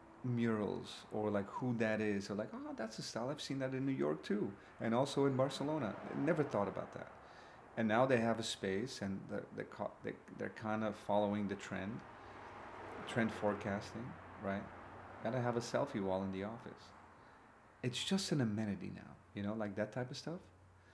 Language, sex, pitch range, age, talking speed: English, male, 105-135 Hz, 30-49, 185 wpm